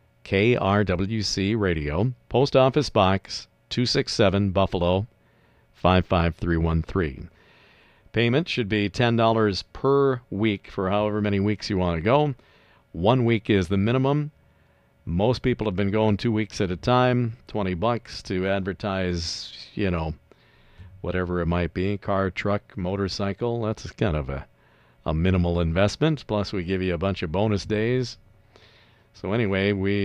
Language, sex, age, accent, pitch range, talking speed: English, male, 50-69, American, 90-115 Hz, 135 wpm